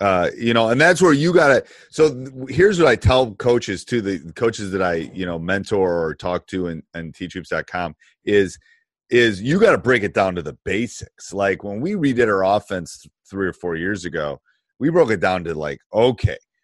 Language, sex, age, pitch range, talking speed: English, male, 30-49, 90-115 Hz, 205 wpm